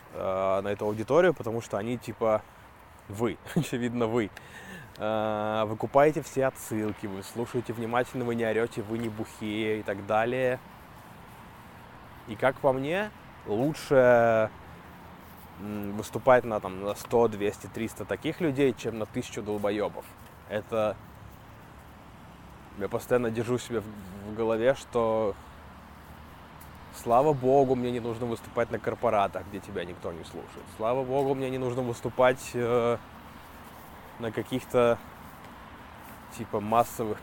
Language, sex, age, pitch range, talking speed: Russian, male, 20-39, 105-125 Hz, 120 wpm